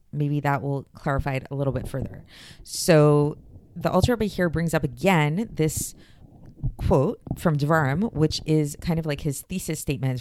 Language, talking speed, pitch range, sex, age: English, 165 wpm, 140-175 Hz, female, 30-49